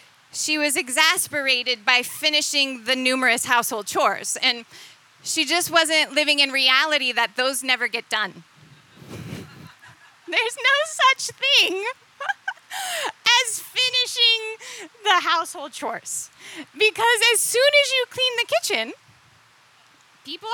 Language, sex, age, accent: English, female, 30-49, American